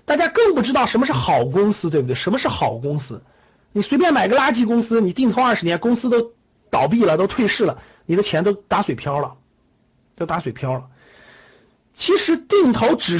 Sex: male